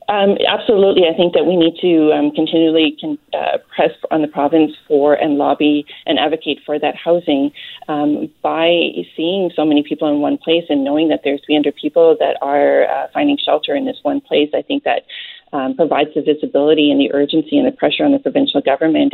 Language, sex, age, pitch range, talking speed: English, female, 40-59, 145-175 Hz, 200 wpm